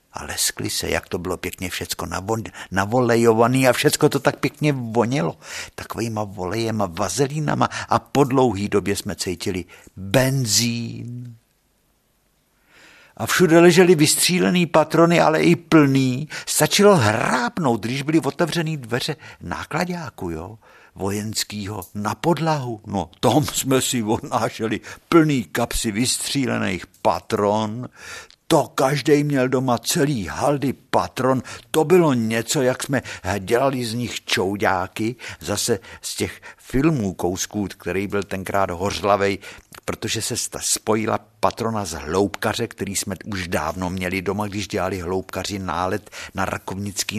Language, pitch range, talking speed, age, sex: Czech, 100-135 Hz, 120 wpm, 60-79, male